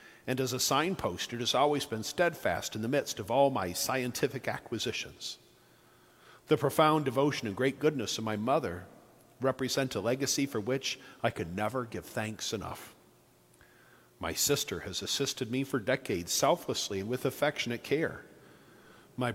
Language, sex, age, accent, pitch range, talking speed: English, male, 50-69, American, 115-140 Hz, 155 wpm